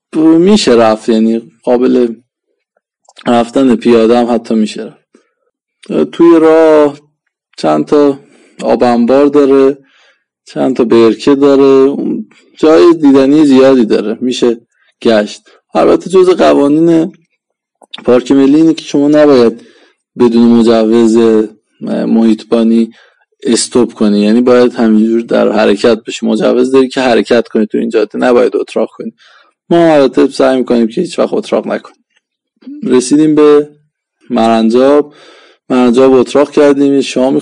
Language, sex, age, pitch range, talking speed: Persian, male, 20-39, 115-150 Hz, 115 wpm